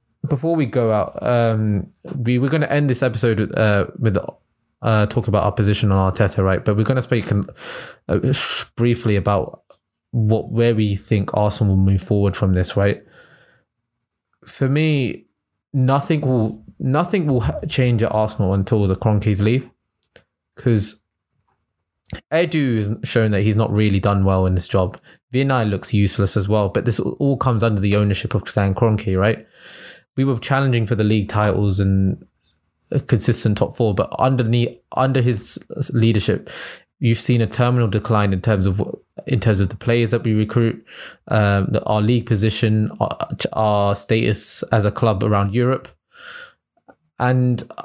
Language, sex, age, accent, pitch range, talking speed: English, male, 20-39, British, 105-125 Hz, 165 wpm